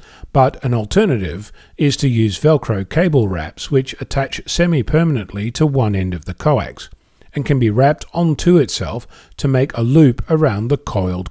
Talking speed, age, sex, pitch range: 165 wpm, 40-59, male, 110-150 Hz